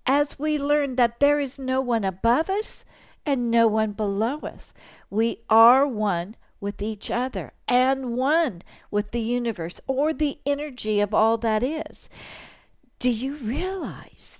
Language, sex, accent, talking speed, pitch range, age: English, female, American, 150 wpm, 220-290 Hz, 60-79